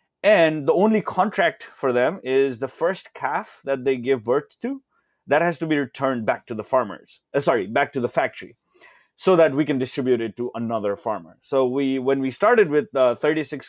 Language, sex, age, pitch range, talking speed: English, male, 20-39, 120-145 Hz, 200 wpm